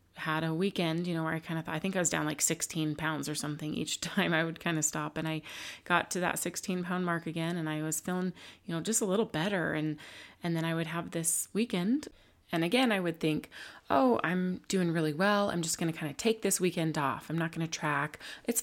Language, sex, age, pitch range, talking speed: English, female, 20-39, 155-180 Hz, 250 wpm